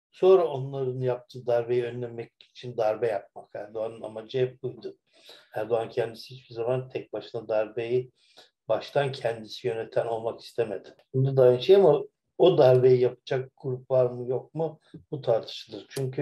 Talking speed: 150 wpm